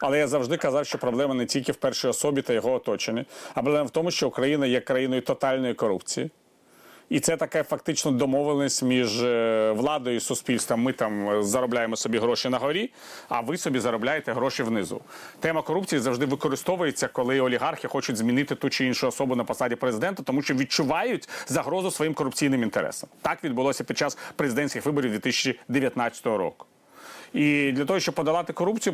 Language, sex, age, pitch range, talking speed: Ukrainian, male, 40-59, 125-155 Hz, 170 wpm